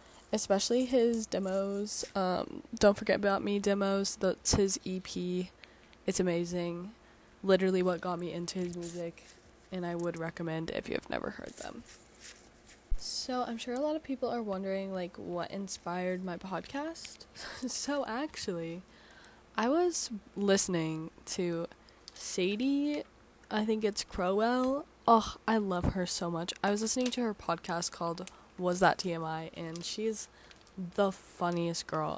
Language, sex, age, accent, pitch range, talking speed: English, female, 10-29, American, 175-215 Hz, 145 wpm